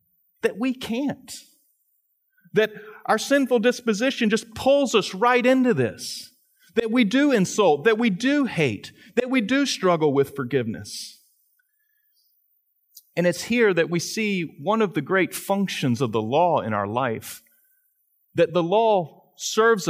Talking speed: 145 wpm